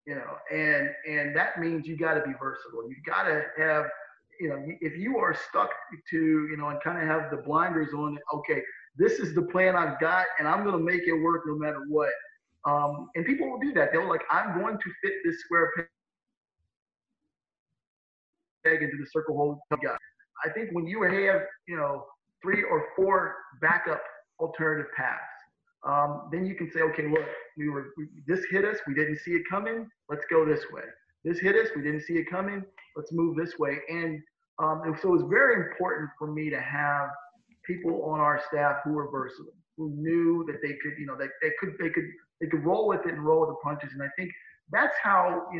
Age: 30-49